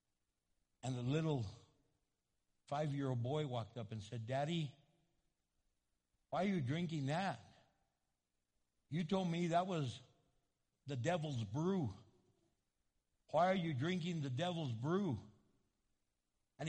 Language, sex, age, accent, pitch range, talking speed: English, male, 60-79, American, 145-225 Hz, 110 wpm